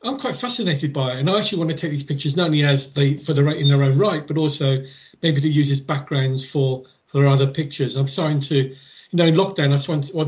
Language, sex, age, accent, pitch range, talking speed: English, male, 40-59, British, 135-165 Hz, 265 wpm